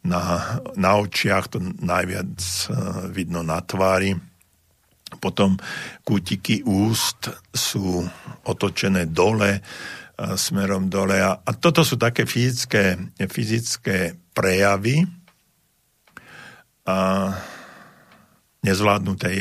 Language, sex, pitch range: Slovak, male, 95-105 Hz